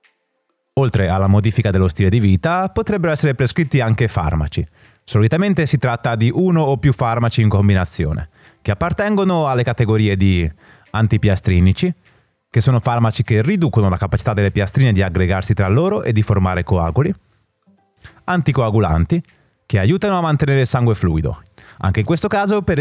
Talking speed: 155 wpm